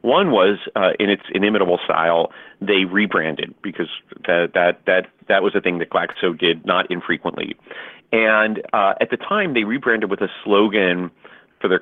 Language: English